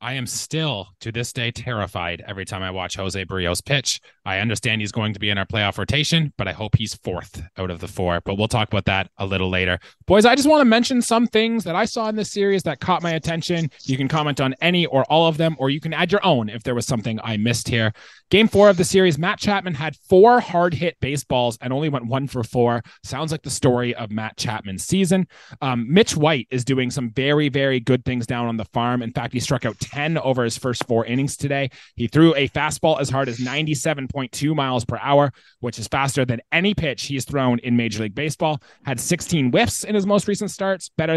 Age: 20-39